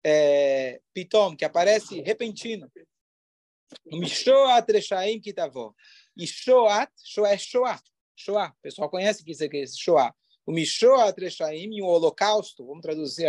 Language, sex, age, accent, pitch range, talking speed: Portuguese, male, 40-59, Brazilian, 170-250 Hz, 115 wpm